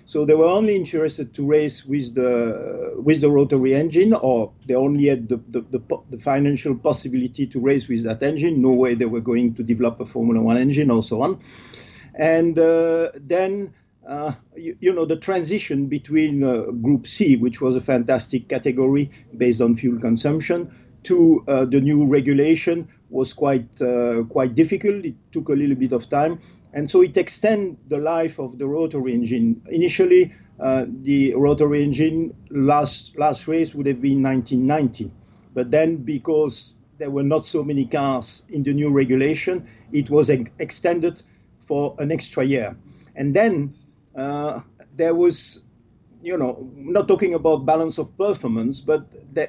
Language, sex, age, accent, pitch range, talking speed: English, male, 50-69, French, 125-160 Hz, 165 wpm